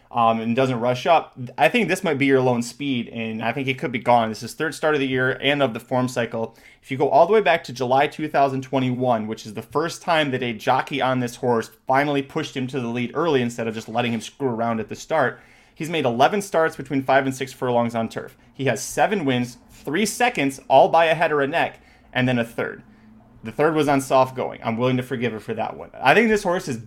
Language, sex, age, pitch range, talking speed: English, male, 30-49, 120-150 Hz, 260 wpm